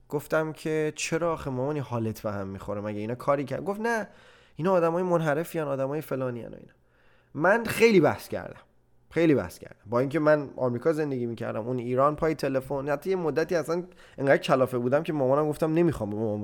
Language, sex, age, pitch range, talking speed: Persian, male, 20-39, 125-165 Hz, 180 wpm